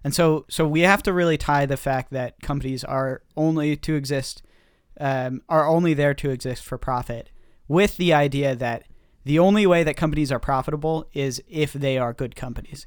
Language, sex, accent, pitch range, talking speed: English, male, American, 130-155 Hz, 190 wpm